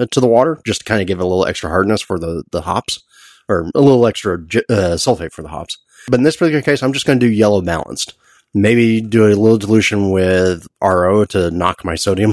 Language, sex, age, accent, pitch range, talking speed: English, male, 30-49, American, 95-120 Hz, 240 wpm